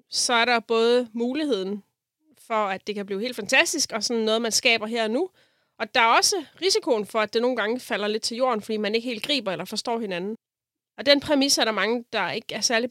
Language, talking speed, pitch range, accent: Danish, 240 wpm, 200-240 Hz, native